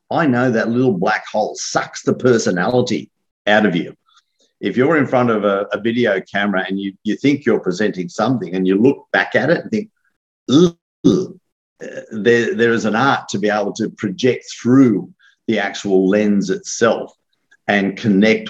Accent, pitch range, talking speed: Australian, 95-115 Hz, 170 wpm